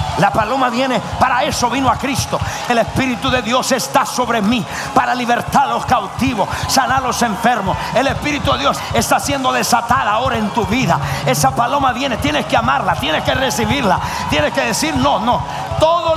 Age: 50-69